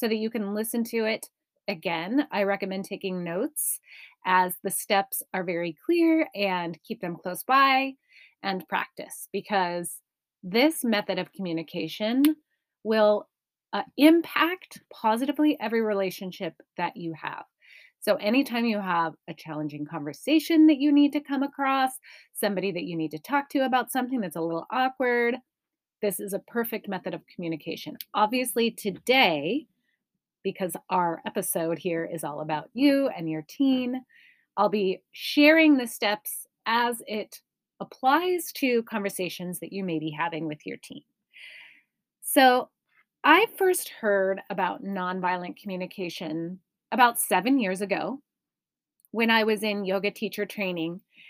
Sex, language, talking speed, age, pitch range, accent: female, English, 140 wpm, 30-49, 185-255 Hz, American